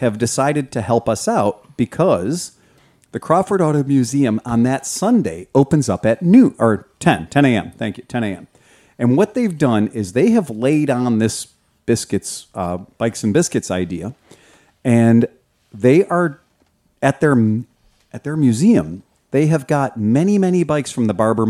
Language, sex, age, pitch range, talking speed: English, male, 40-59, 110-145 Hz, 165 wpm